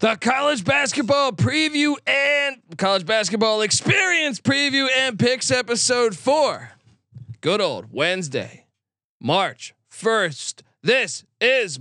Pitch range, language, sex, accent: 145-205 Hz, English, male, American